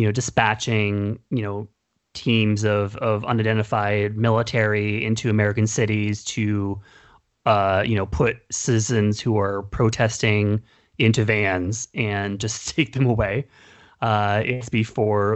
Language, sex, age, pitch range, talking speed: English, male, 30-49, 110-135 Hz, 125 wpm